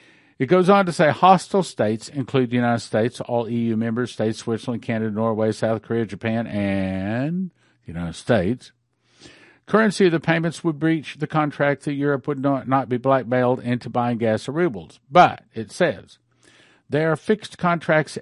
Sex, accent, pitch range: male, American, 115-155 Hz